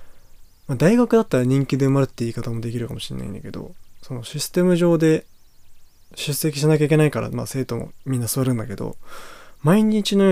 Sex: male